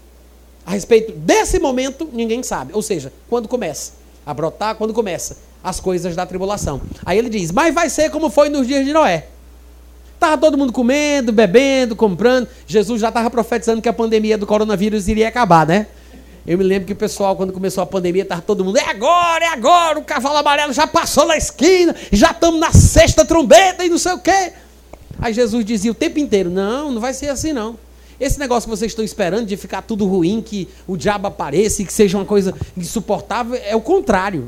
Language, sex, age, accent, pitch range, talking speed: Portuguese, male, 30-49, Brazilian, 205-315 Hz, 205 wpm